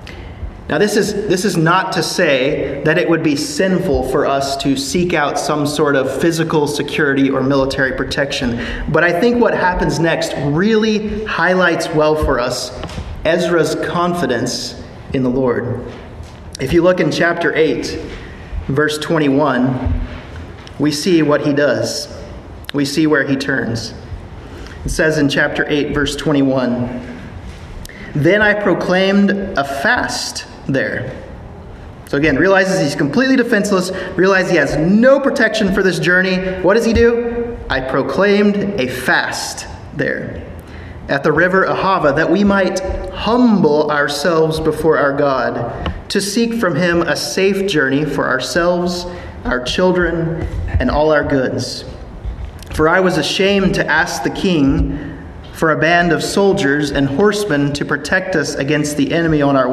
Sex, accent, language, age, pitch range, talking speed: male, American, English, 30-49, 135-185 Hz, 145 wpm